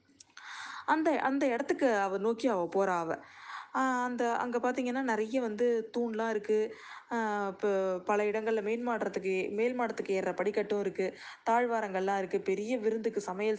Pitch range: 190-235 Hz